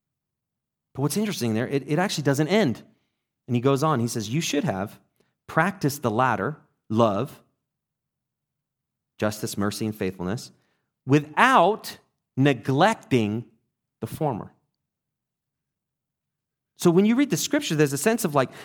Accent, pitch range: American, 110-175 Hz